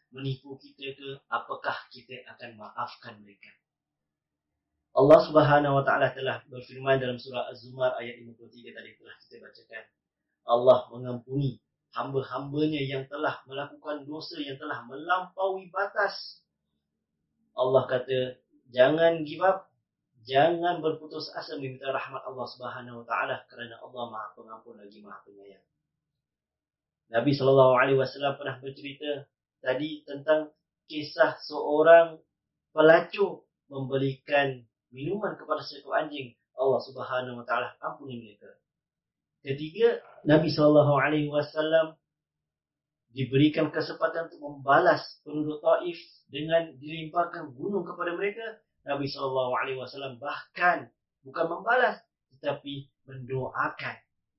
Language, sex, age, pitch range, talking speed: Malay, male, 30-49, 125-155 Hz, 105 wpm